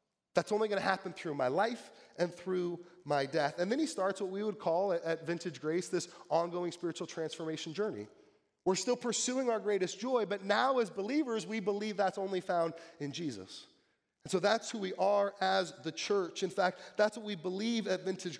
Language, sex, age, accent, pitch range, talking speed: English, male, 30-49, American, 185-255 Hz, 200 wpm